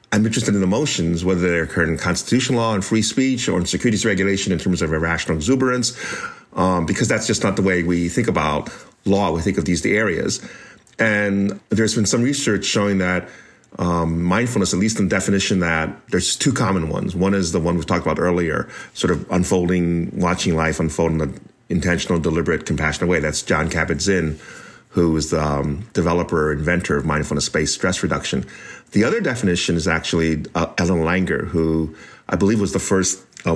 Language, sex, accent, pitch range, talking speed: English, male, American, 85-100 Hz, 190 wpm